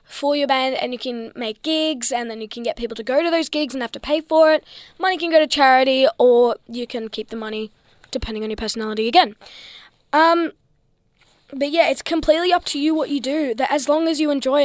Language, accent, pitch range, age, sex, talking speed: English, Australian, 240-315 Hz, 10-29, female, 240 wpm